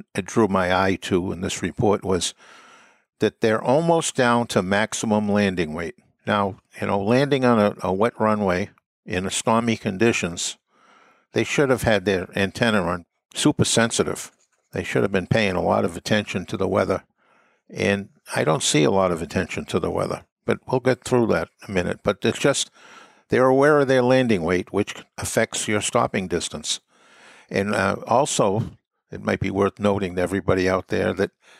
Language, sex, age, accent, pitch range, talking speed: English, male, 60-79, American, 95-115 Hz, 180 wpm